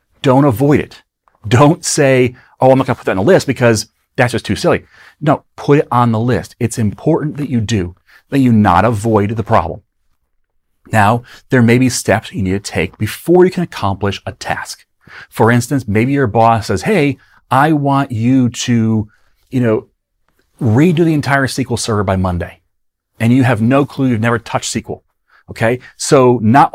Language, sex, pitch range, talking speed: English, male, 105-140 Hz, 185 wpm